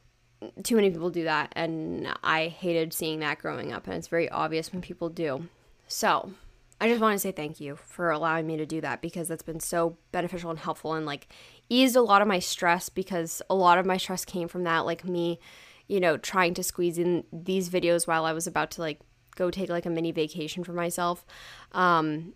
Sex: female